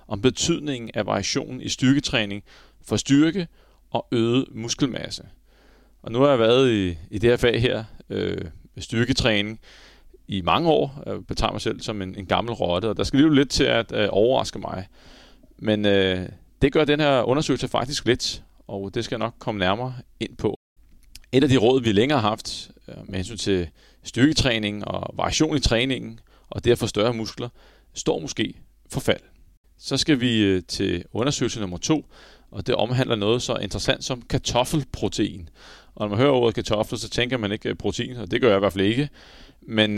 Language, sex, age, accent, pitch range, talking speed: Danish, male, 30-49, native, 100-130 Hz, 185 wpm